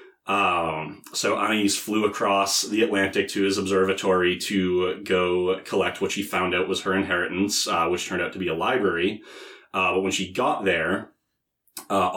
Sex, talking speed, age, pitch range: male, 175 wpm, 30-49, 90-100 Hz